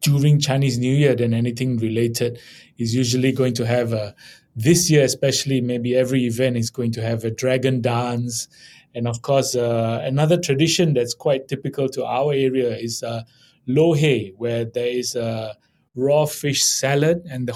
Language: English